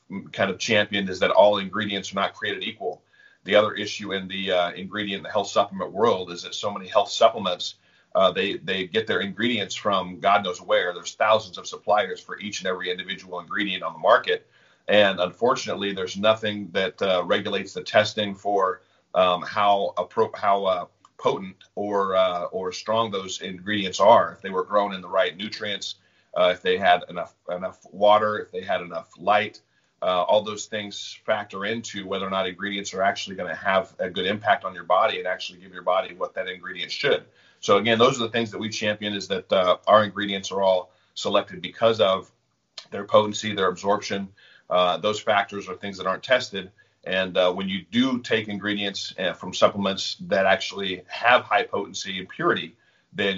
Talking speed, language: 195 wpm, English